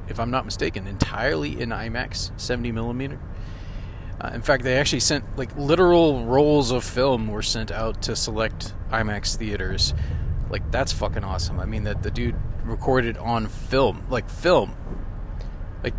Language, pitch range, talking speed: English, 100-120 Hz, 150 wpm